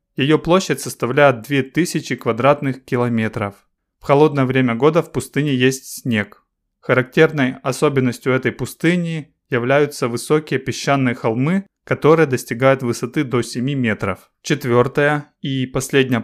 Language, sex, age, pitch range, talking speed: Russian, male, 20-39, 120-145 Hz, 115 wpm